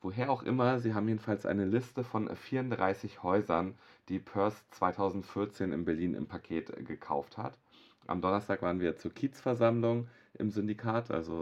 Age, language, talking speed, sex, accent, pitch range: 30-49, German, 150 wpm, male, German, 80-105 Hz